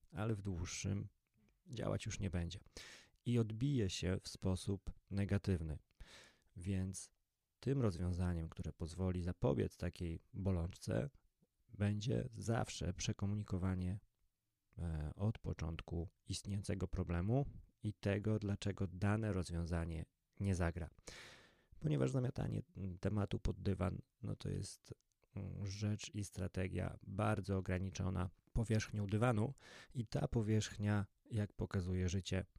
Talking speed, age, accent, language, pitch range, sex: 105 wpm, 30-49, native, Polish, 95-110 Hz, male